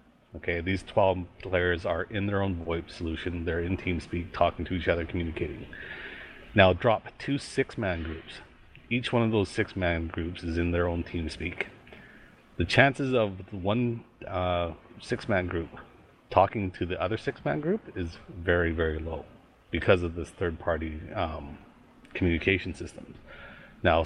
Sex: male